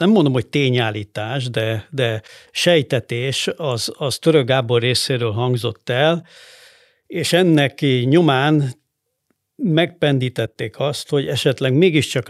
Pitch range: 125-160 Hz